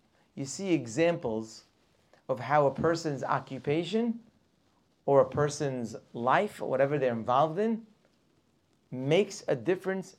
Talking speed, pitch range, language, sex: 120 wpm, 135-180 Hz, English, male